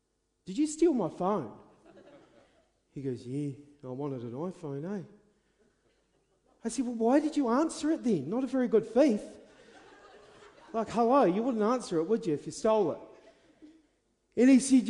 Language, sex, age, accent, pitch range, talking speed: English, male, 40-59, Australian, 210-310 Hz, 170 wpm